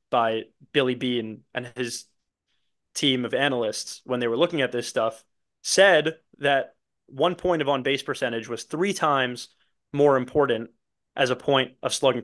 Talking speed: 155 wpm